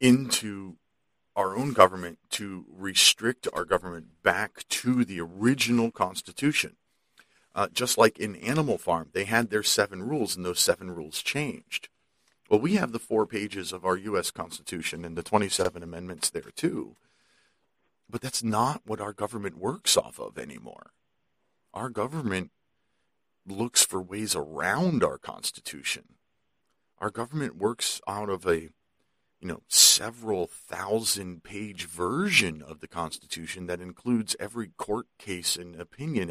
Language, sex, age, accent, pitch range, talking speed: English, male, 40-59, American, 90-115 Hz, 140 wpm